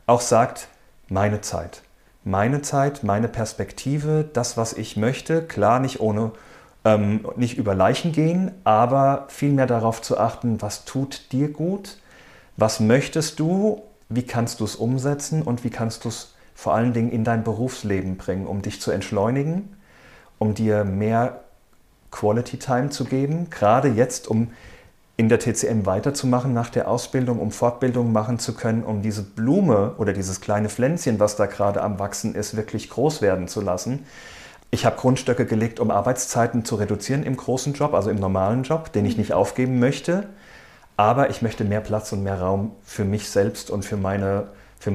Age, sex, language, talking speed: 40-59, male, German, 170 wpm